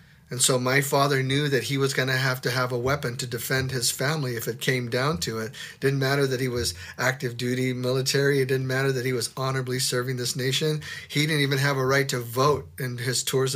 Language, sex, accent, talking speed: English, male, American, 240 wpm